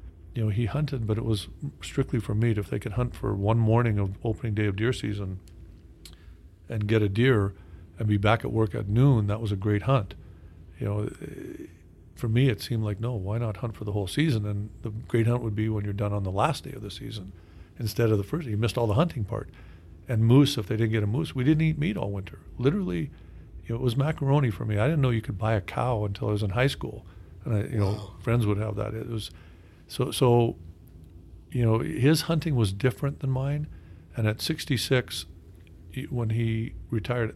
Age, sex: 50-69, male